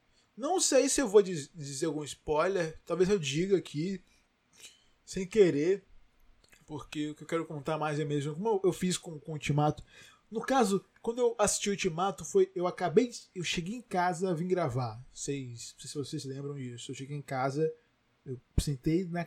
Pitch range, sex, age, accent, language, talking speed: 140-190 Hz, male, 20-39, Brazilian, Portuguese, 190 wpm